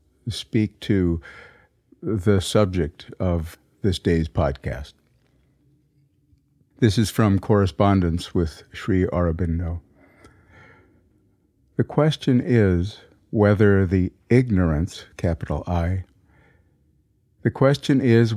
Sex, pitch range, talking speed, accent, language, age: male, 85-110 Hz, 85 wpm, American, English, 50-69